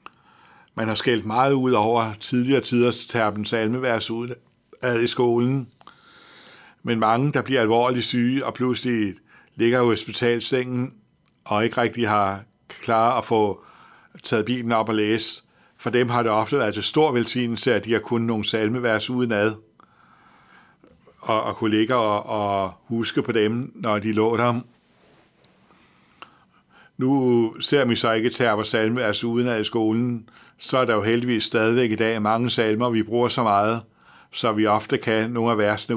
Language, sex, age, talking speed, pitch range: Danish, male, 60-79, 165 wpm, 110-120 Hz